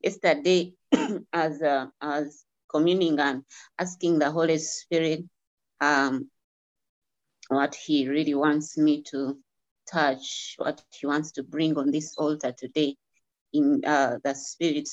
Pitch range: 145-180 Hz